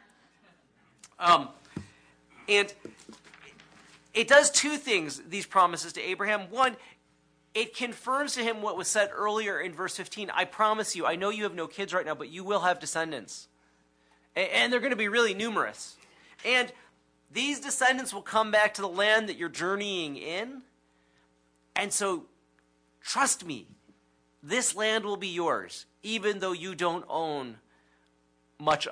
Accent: American